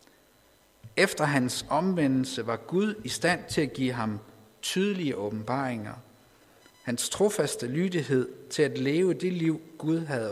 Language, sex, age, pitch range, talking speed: Danish, male, 50-69, 120-160 Hz, 135 wpm